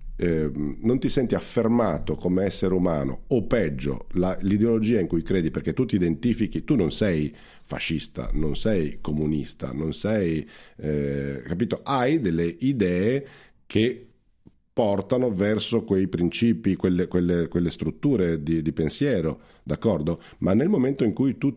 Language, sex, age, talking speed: Italian, male, 50-69, 140 wpm